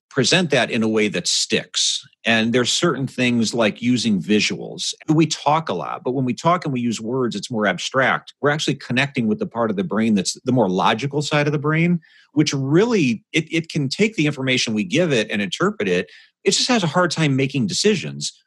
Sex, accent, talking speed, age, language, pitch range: male, American, 220 wpm, 40-59, English, 115-160 Hz